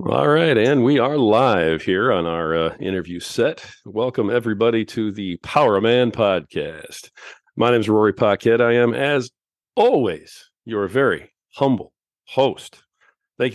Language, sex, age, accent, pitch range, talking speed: English, male, 40-59, American, 105-130 Hz, 145 wpm